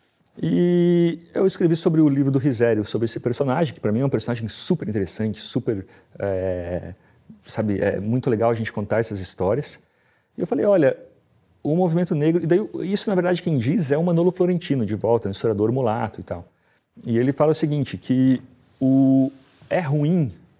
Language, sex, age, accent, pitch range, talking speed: Portuguese, male, 40-59, Brazilian, 115-160 Hz, 185 wpm